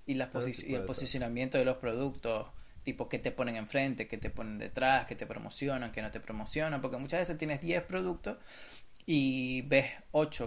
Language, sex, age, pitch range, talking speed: Spanish, male, 30-49, 115-150 Hz, 195 wpm